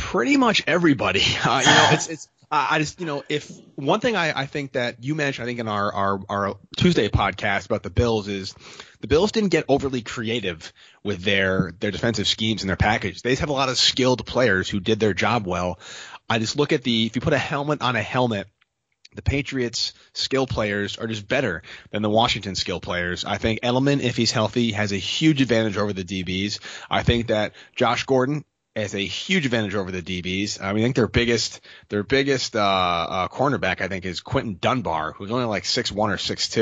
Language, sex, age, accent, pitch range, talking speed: English, male, 30-49, American, 100-125 Hz, 215 wpm